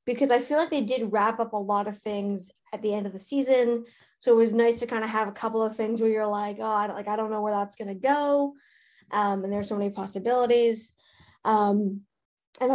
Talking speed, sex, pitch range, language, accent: 235 wpm, female, 210-255 Hz, English, American